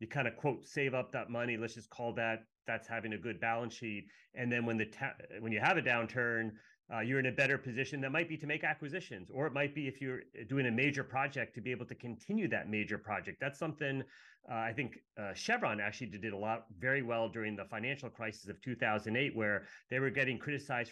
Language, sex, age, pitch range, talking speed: English, male, 30-49, 110-135 Hz, 235 wpm